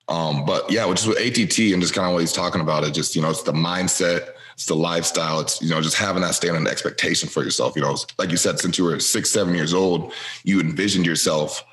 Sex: male